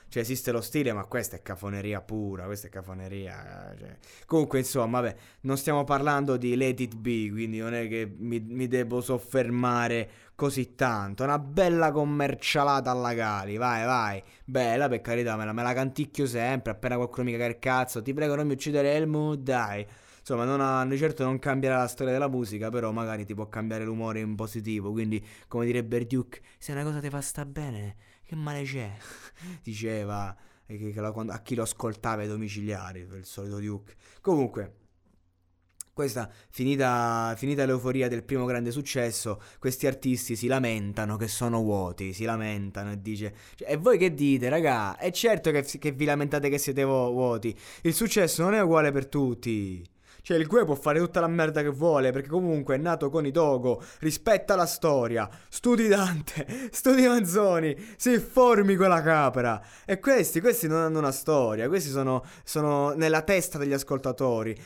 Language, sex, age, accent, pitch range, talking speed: Italian, male, 20-39, native, 110-145 Hz, 175 wpm